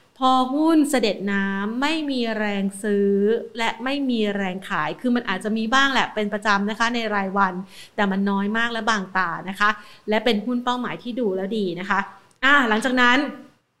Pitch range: 205-245 Hz